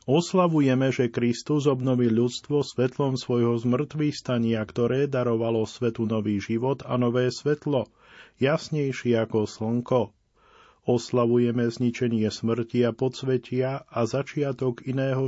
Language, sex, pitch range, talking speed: Slovak, male, 115-135 Hz, 110 wpm